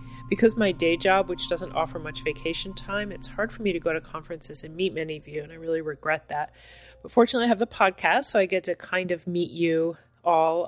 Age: 30-49